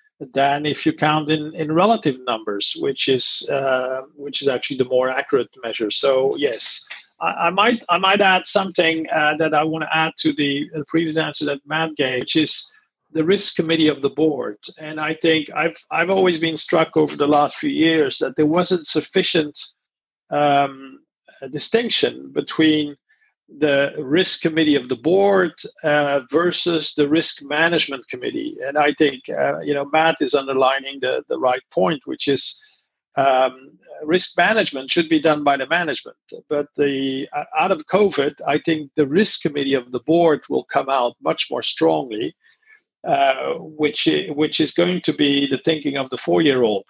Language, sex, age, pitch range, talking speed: English, male, 40-59, 140-170 Hz, 175 wpm